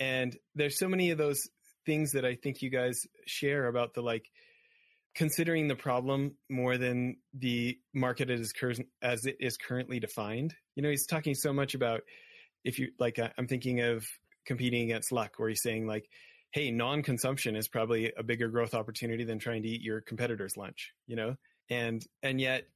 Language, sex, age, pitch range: English, male, 30-49, 120-145 Hz